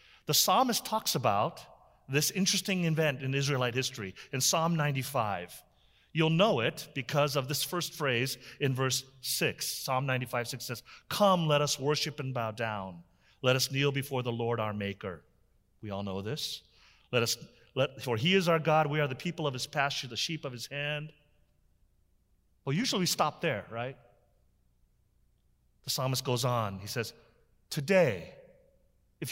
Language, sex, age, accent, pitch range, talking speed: English, male, 40-59, American, 115-150 Hz, 165 wpm